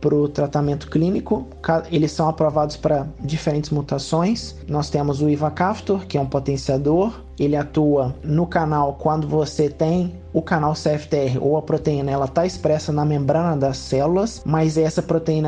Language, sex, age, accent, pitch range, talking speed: Portuguese, male, 20-39, Brazilian, 145-175 Hz, 160 wpm